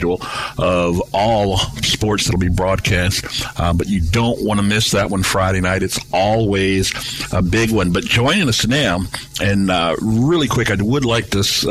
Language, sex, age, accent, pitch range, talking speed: English, male, 50-69, American, 100-125 Hz, 185 wpm